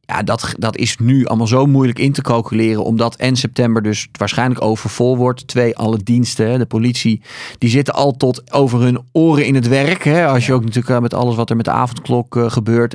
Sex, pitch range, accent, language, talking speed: male, 110-130 Hz, Dutch, Dutch, 215 wpm